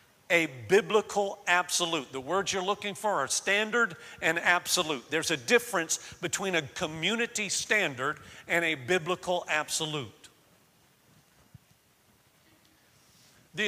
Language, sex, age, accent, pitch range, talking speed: English, male, 50-69, American, 150-195 Hz, 105 wpm